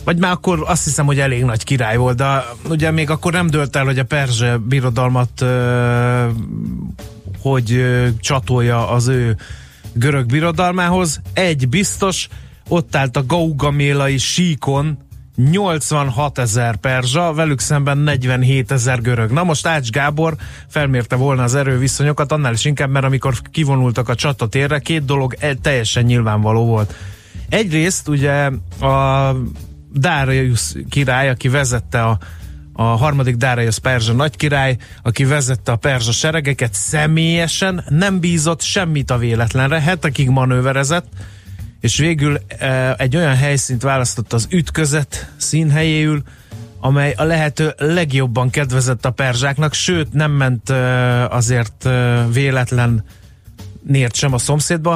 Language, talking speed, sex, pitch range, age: Hungarian, 125 wpm, male, 120-150 Hz, 20-39